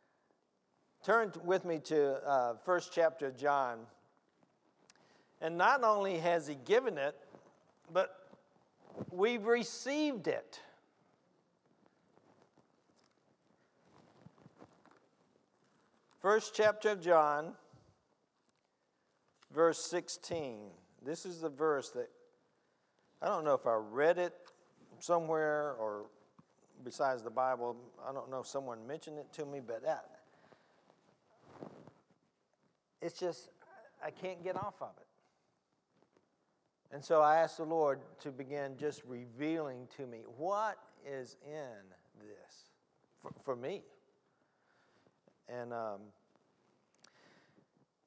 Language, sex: English, male